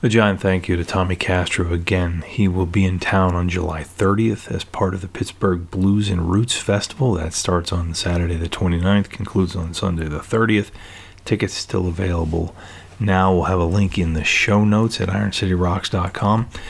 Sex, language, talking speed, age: male, English, 180 wpm, 30-49